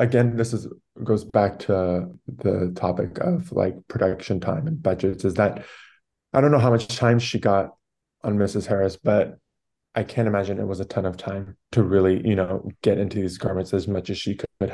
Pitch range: 95-115 Hz